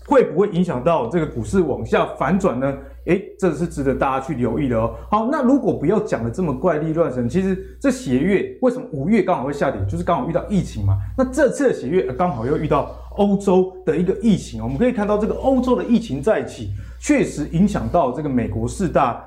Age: 20-39